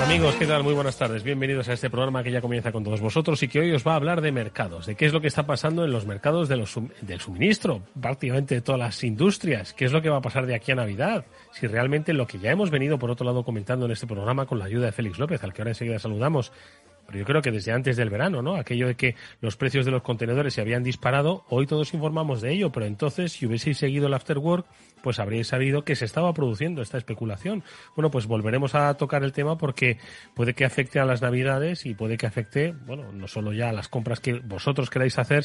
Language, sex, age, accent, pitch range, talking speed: Spanish, male, 30-49, Spanish, 115-150 Hz, 255 wpm